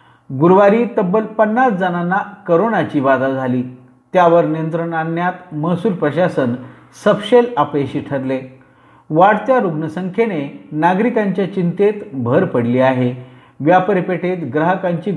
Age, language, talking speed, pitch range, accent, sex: 50-69, Marathi, 75 wpm, 145-215 Hz, native, male